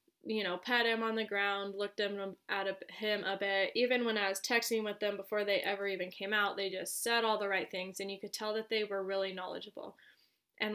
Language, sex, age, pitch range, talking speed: English, female, 20-39, 200-235 Hz, 240 wpm